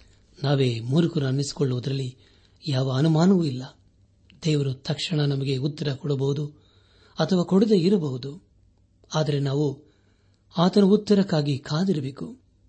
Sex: male